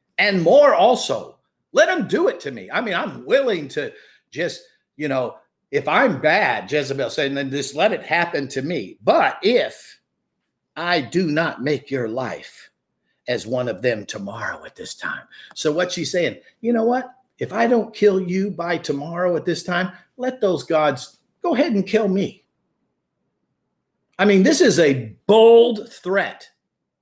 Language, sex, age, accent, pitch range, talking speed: English, male, 50-69, American, 155-240 Hz, 170 wpm